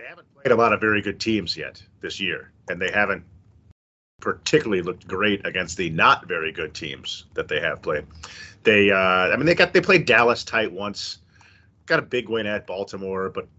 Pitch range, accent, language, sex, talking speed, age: 95-115 Hz, American, English, male, 205 wpm, 30-49